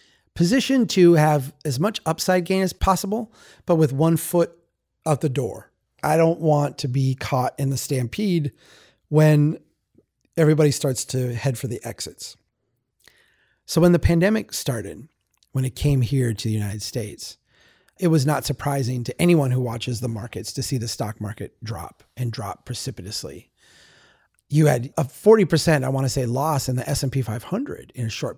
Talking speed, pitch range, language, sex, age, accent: 170 wpm, 120-160 Hz, English, male, 30-49, American